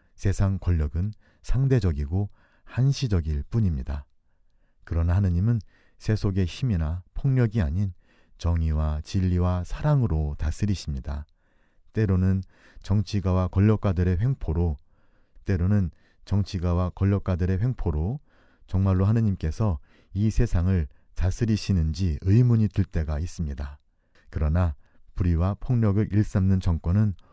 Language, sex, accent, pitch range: Korean, male, native, 80-100 Hz